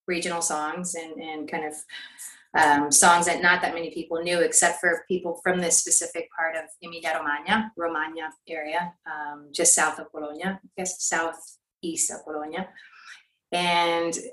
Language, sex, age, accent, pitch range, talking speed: English, female, 30-49, American, 165-185 Hz, 150 wpm